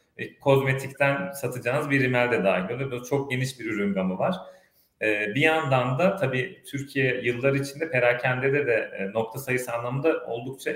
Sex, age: male, 40-59